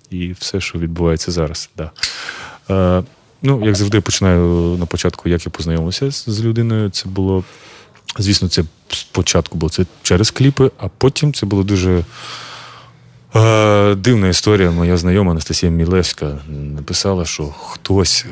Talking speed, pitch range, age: 140 wpm, 90-120 Hz, 20-39